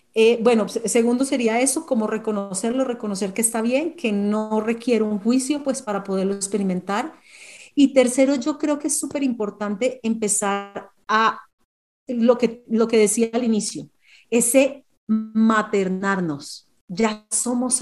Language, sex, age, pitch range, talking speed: Spanish, female, 40-59, 210-255 Hz, 140 wpm